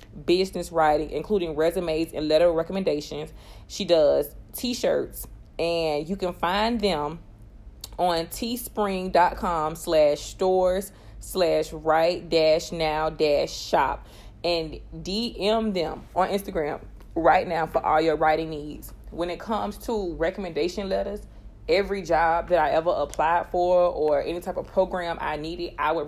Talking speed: 135 wpm